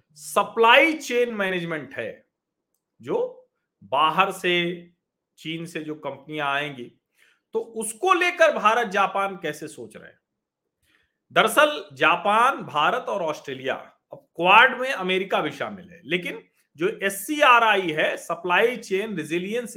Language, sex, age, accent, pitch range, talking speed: Hindi, male, 40-59, native, 165-245 Hz, 120 wpm